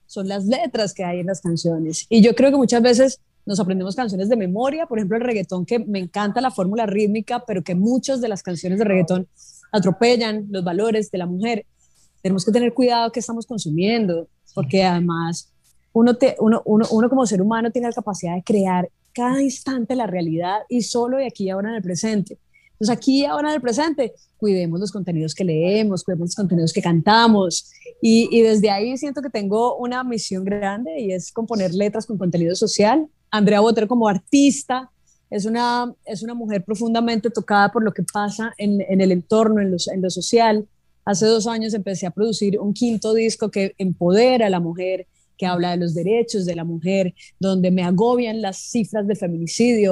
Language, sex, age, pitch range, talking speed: Spanish, female, 20-39, 190-230 Hz, 200 wpm